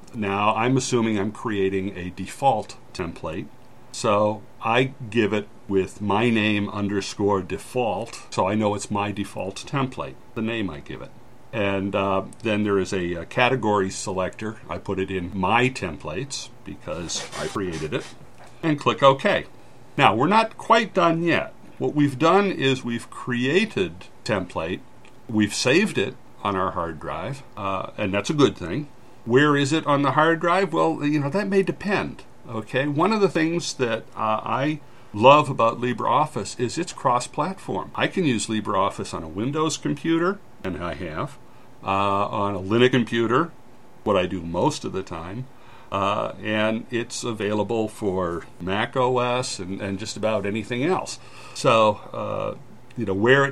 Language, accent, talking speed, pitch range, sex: English, American, 165 wpm, 100-130 Hz, male